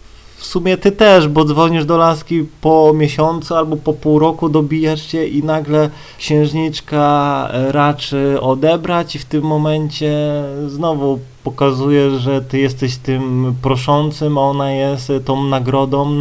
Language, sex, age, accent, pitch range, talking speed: Polish, male, 30-49, native, 135-185 Hz, 135 wpm